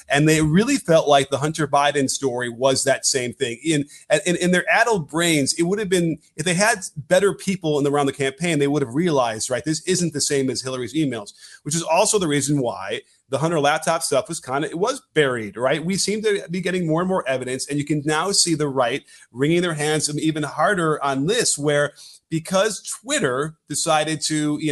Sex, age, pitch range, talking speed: male, 30-49, 140-175 Hz, 220 wpm